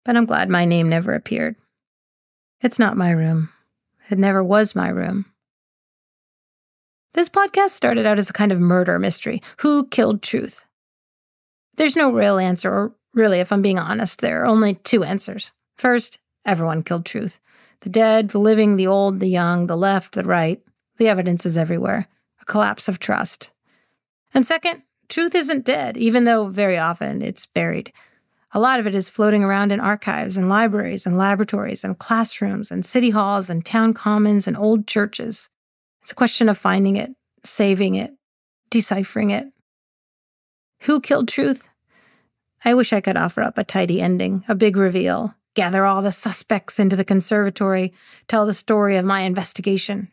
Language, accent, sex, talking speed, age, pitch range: English, American, female, 170 wpm, 40-59, 190-225 Hz